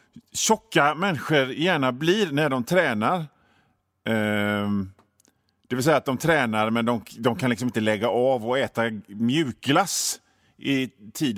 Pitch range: 105-155 Hz